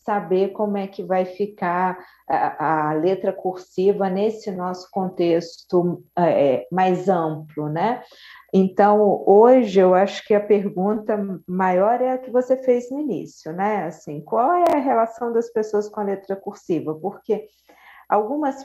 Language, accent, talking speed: Portuguese, Brazilian, 145 wpm